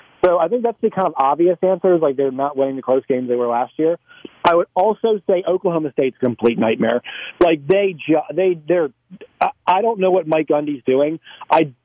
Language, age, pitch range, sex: English, 40-59, 140-190 Hz, male